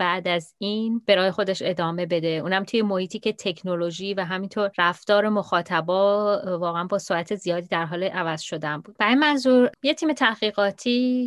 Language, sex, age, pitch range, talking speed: Persian, female, 30-49, 175-225 Hz, 165 wpm